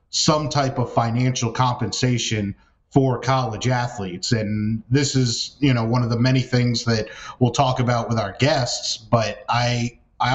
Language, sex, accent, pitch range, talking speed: English, male, American, 120-140 Hz, 160 wpm